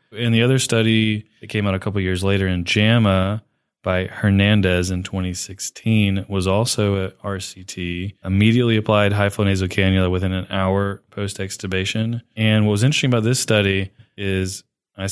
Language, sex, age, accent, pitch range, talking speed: English, male, 20-39, American, 95-110 Hz, 165 wpm